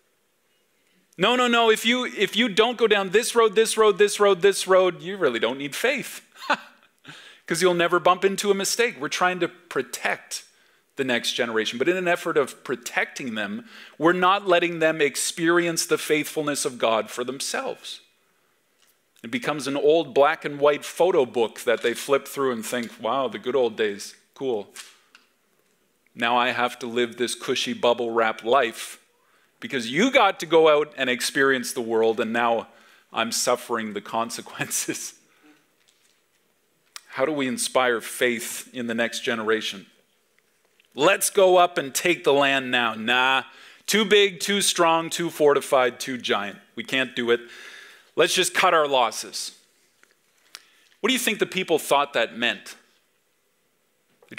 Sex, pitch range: male, 125-195 Hz